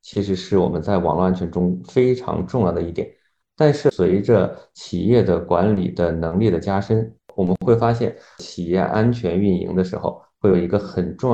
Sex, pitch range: male, 90-110 Hz